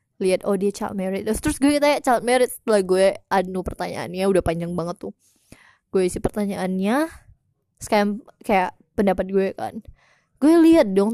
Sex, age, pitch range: female, 20-39, 190-240 Hz